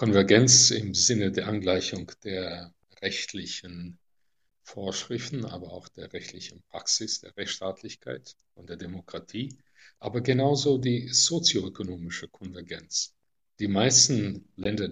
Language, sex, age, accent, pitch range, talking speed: German, male, 50-69, German, 95-125 Hz, 105 wpm